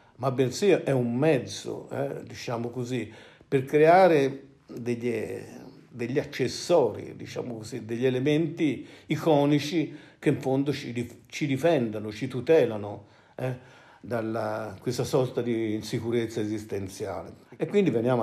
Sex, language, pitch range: male, Italian, 115-140 Hz